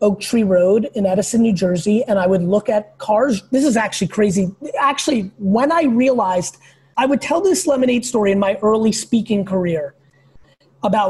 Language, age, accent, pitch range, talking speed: English, 30-49, American, 185-255 Hz, 180 wpm